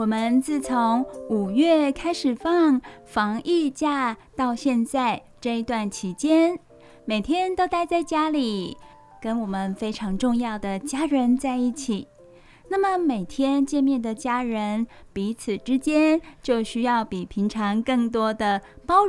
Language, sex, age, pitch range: Chinese, female, 10-29, 220-295 Hz